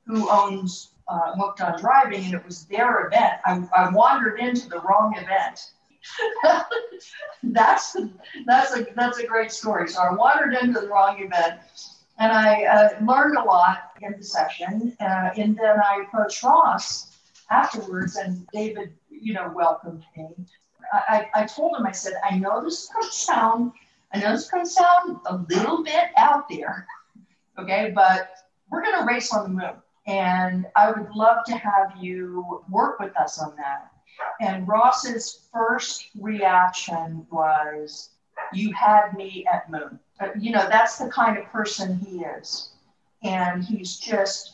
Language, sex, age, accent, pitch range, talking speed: English, female, 50-69, American, 185-230 Hz, 160 wpm